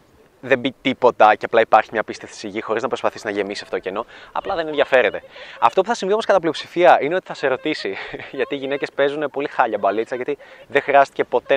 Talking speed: 225 wpm